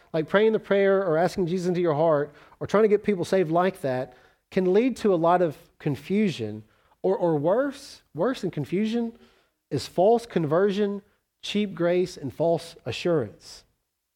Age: 40-59